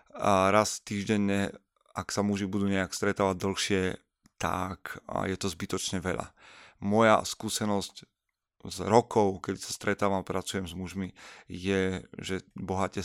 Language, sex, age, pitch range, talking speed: Slovak, male, 30-49, 95-110 Hz, 130 wpm